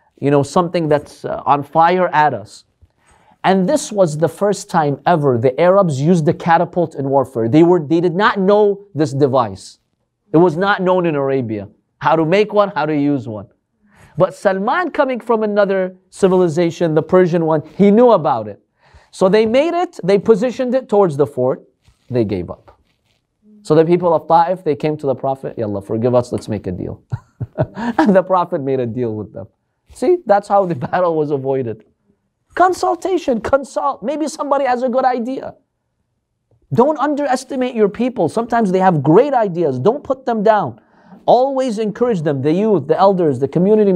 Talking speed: 180 wpm